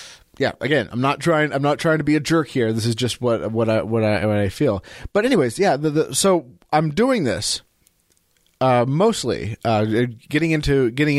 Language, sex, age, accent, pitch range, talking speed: English, male, 30-49, American, 105-135 Hz, 210 wpm